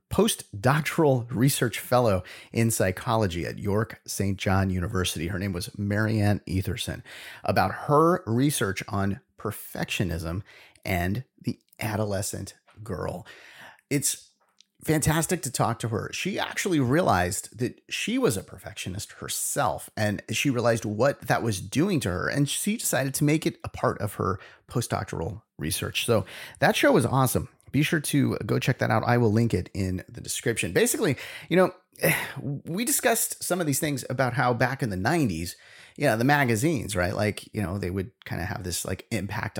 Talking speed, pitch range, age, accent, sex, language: 165 wpm, 95-135 Hz, 30-49, American, male, English